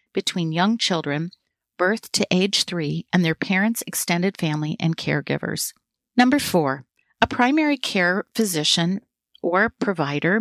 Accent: American